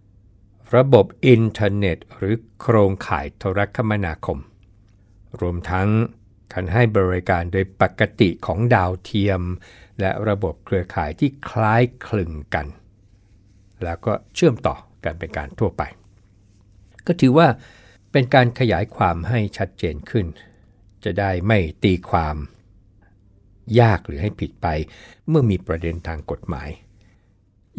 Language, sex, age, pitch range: Thai, male, 60-79, 95-120 Hz